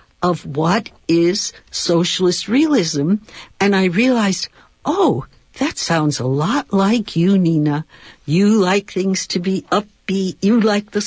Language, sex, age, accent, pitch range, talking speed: English, female, 60-79, American, 160-205 Hz, 135 wpm